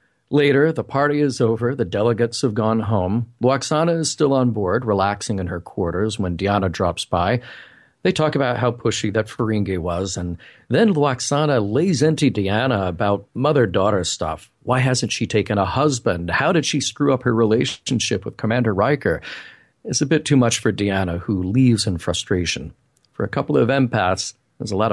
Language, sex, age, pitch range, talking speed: English, male, 40-59, 100-130 Hz, 180 wpm